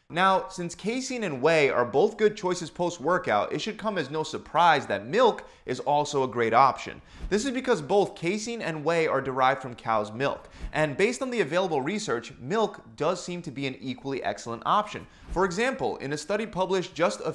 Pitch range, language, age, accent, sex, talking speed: 130-190 Hz, English, 30-49, American, male, 200 wpm